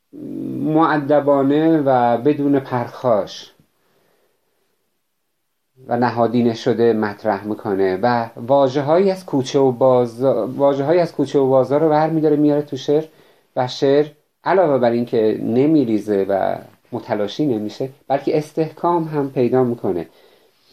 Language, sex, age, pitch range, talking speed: Persian, male, 50-69, 115-140 Hz, 115 wpm